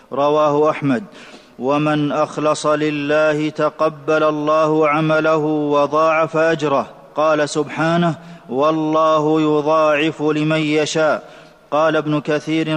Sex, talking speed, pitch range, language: male, 90 wpm, 150-160 Hz, Arabic